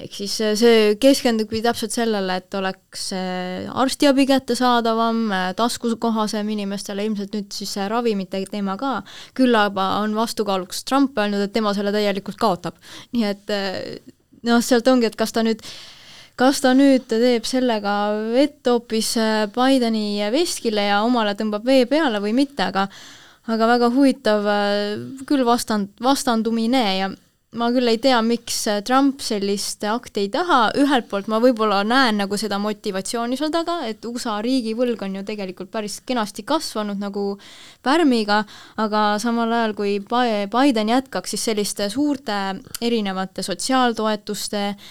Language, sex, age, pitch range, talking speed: English, female, 20-39, 200-240 Hz, 145 wpm